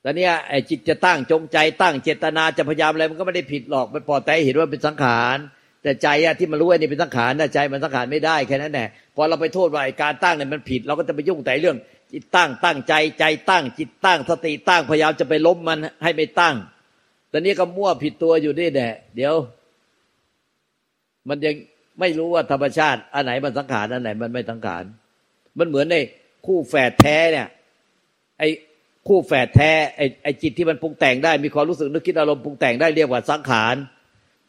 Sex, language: male, Thai